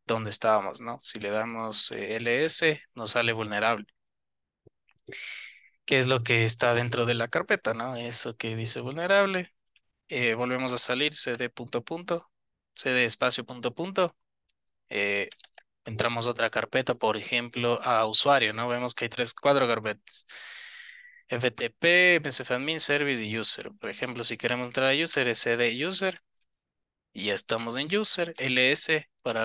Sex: male